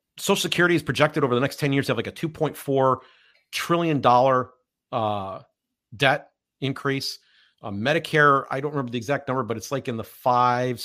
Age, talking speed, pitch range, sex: 40-59, 185 wpm, 115-140 Hz, male